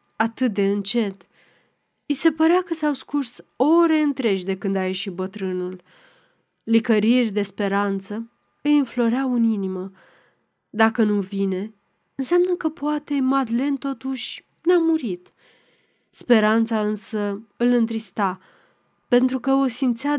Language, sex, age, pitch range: Romanian, female, 30-49, 205-270 Hz